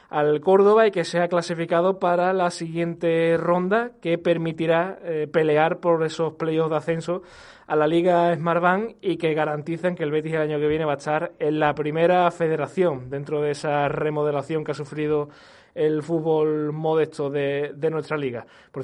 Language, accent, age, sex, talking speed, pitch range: Spanish, Spanish, 20-39, male, 180 wpm, 150-170 Hz